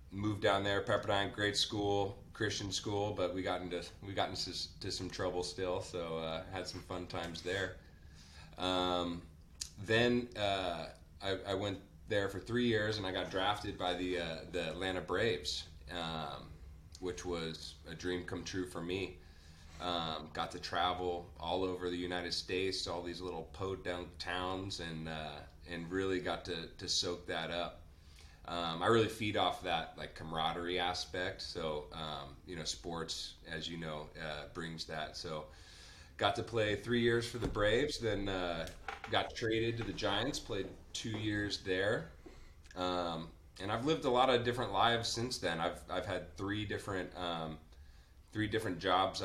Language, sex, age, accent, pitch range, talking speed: English, male, 30-49, American, 80-95 Hz, 170 wpm